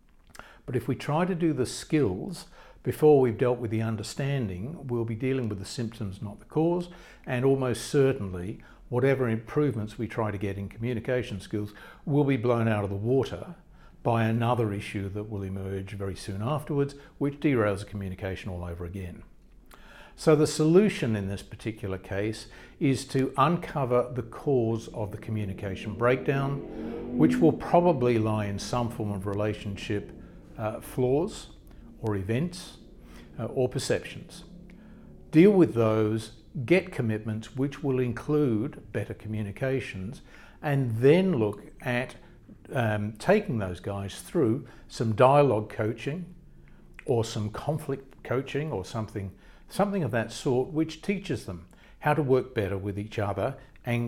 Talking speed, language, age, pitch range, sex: 150 wpm, English, 60-79, 105-140 Hz, male